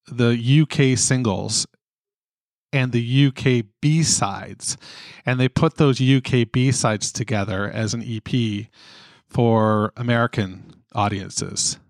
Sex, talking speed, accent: male, 110 wpm, American